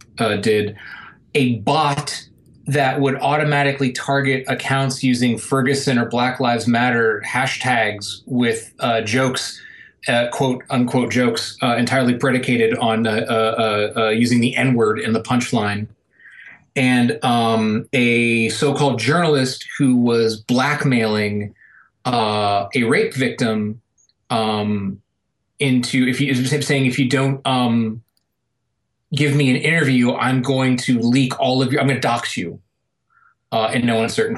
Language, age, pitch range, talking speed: English, 30-49, 115-140 Hz, 140 wpm